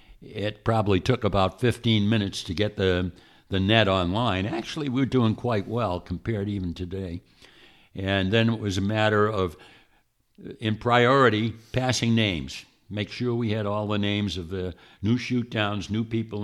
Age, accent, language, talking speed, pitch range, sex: 60-79, American, English, 165 wpm, 95-115 Hz, male